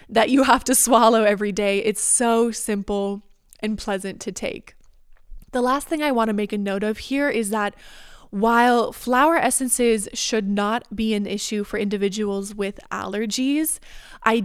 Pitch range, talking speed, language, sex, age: 205-245 Hz, 165 wpm, English, female, 20-39